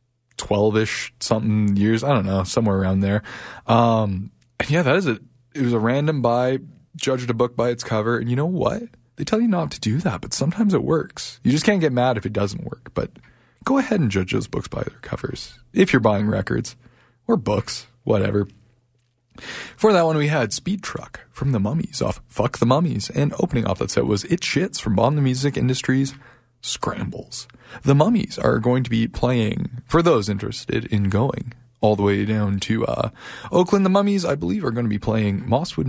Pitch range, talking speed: 110-140 Hz, 205 wpm